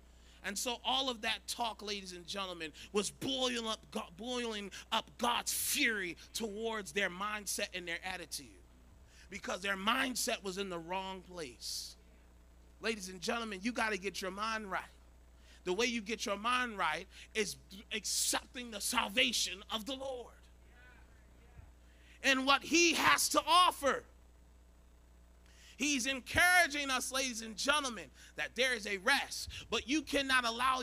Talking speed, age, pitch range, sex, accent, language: 150 wpm, 30-49, 180-255 Hz, male, American, English